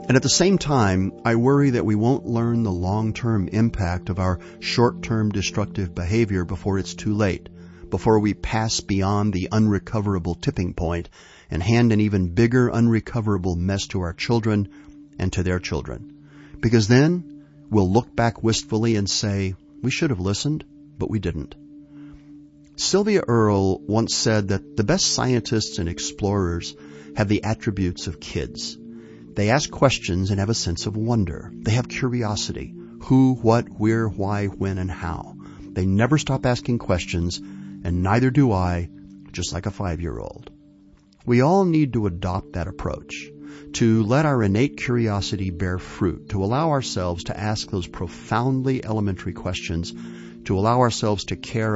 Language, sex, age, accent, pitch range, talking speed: English, male, 50-69, American, 90-120 Hz, 155 wpm